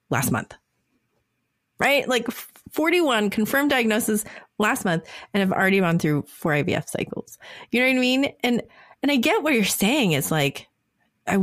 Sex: female